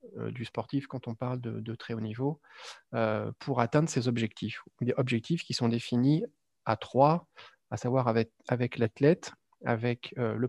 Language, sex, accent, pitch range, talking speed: French, male, French, 120-135 Hz, 170 wpm